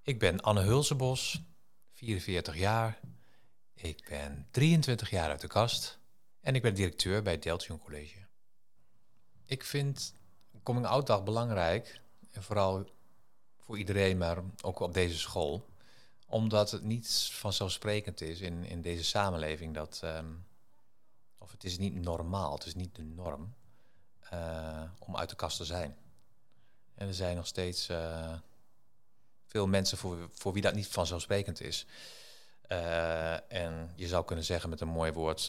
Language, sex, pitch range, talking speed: Dutch, male, 85-105 Hz, 150 wpm